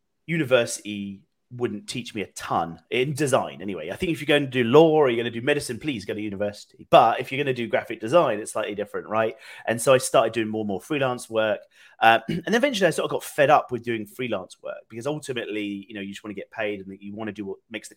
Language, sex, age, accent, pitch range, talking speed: English, male, 30-49, British, 100-125 Hz, 265 wpm